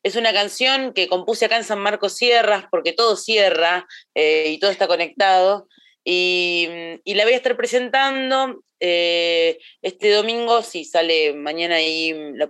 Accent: Argentinian